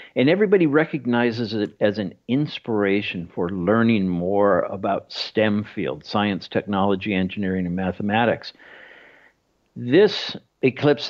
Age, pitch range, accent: 60-79, 100-130 Hz, American